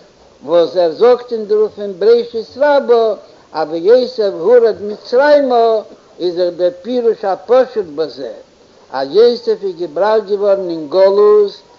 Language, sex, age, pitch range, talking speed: Hebrew, male, 60-79, 200-245 Hz, 100 wpm